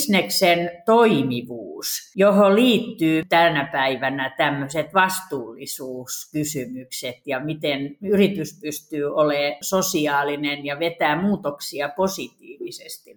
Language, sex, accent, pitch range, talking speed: Finnish, female, native, 155-205 Hz, 80 wpm